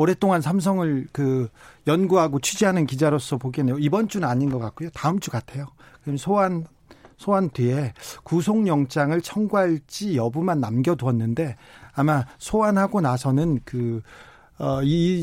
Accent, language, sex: native, Korean, male